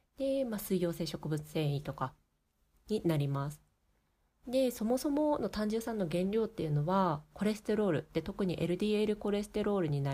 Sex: female